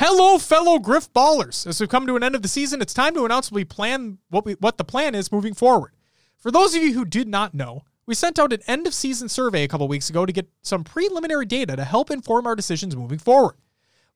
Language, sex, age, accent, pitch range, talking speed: English, male, 30-49, American, 165-250 Hz, 250 wpm